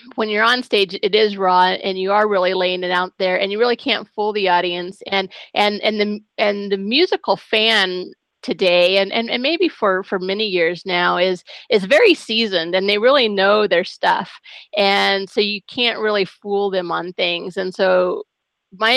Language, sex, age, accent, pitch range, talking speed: English, female, 30-49, American, 185-210 Hz, 195 wpm